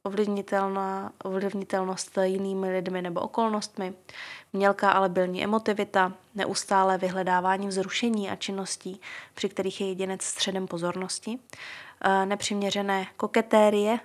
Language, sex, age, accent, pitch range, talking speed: Czech, female, 20-39, native, 185-205 Hz, 90 wpm